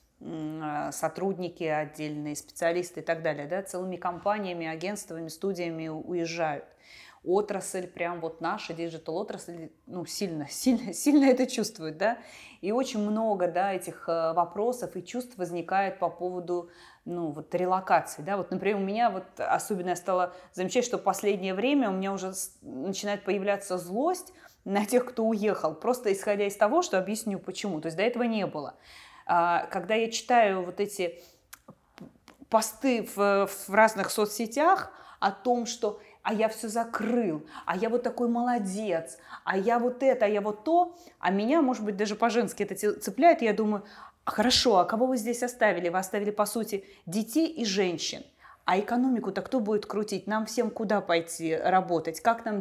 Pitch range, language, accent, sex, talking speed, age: 175-225 Hz, Russian, native, female, 155 wpm, 20-39